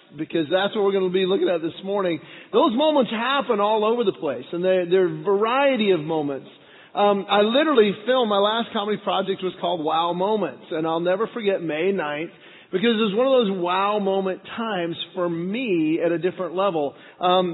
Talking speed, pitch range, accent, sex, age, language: 200 wpm, 170-225 Hz, American, male, 40-59, English